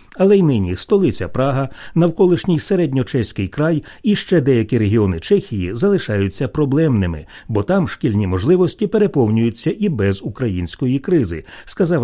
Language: Ukrainian